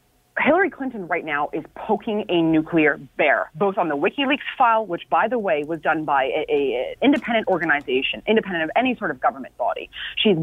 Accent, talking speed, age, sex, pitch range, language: American, 185 wpm, 30-49, female, 170-255 Hz, English